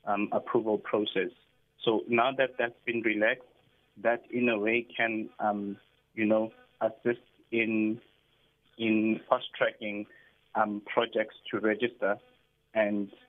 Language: English